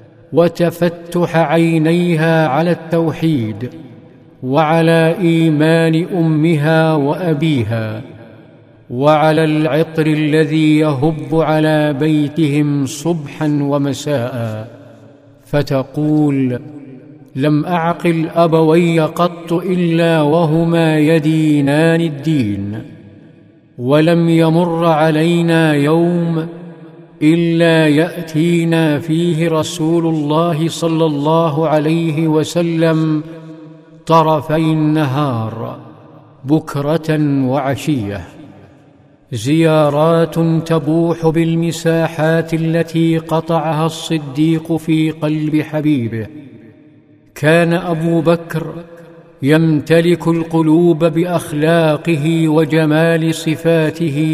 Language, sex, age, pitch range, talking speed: Arabic, male, 50-69, 150-165 Hz, 65 wpm